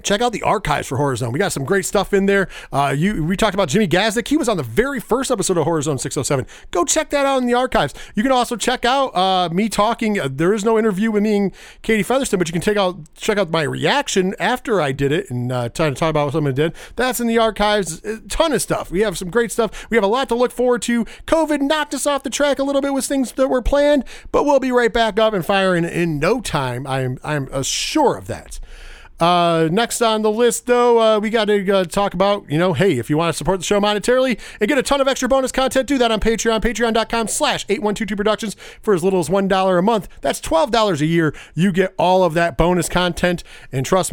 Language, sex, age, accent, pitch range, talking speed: English, male, 40-59, American, 175-230 Hz, 260 wpm